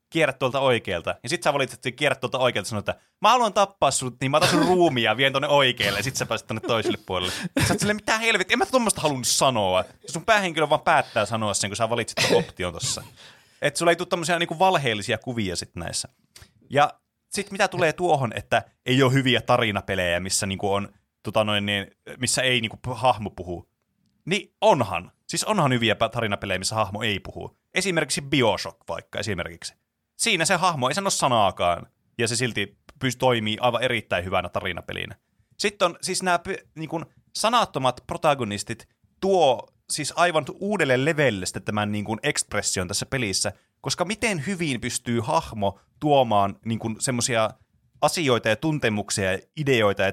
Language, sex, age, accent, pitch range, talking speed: Finnish, male, 30-49, native, 105-160 Hz, 170 wpm